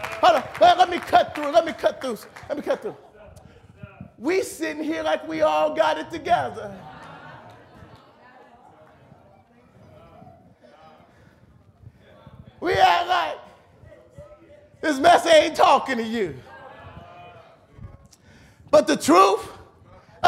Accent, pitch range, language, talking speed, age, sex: American, 310-405 Hz, English, 105 wpm, 30-49, male